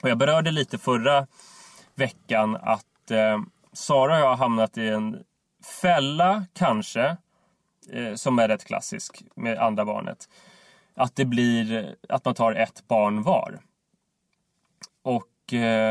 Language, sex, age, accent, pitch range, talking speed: English, male, 20-39, Swedish, 110-185 Hz, 130 wpm